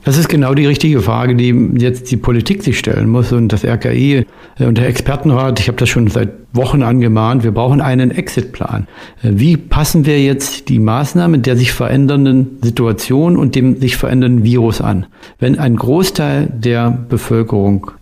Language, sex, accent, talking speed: German, male, German, 170 wpm